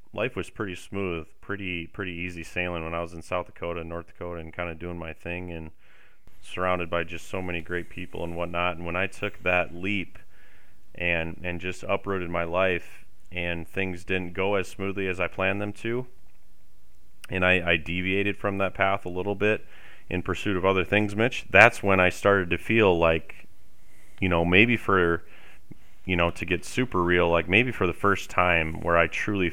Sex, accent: male, American